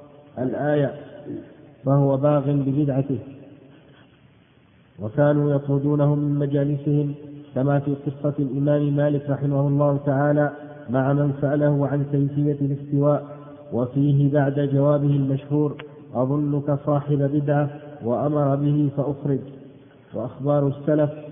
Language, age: Arabic, 50-69